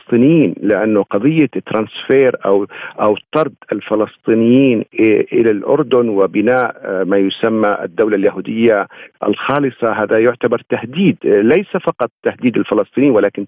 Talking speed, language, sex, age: 105 wpm, Arabic, male, 50-69